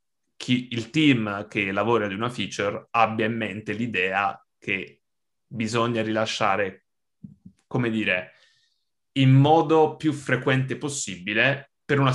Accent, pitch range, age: native, 100-125 Hz, 20-39